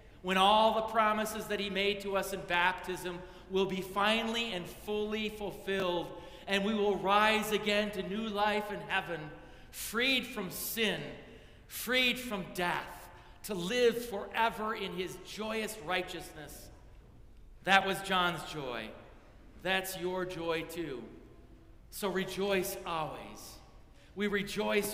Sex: male